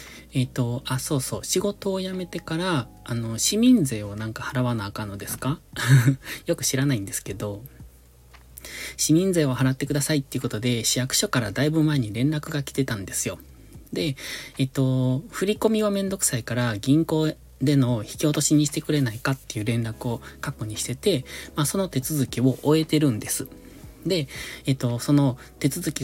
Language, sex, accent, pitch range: Japanese, male, native, 115-155 Hz